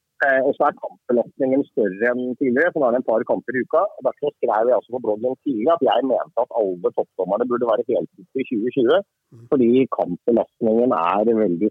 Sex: male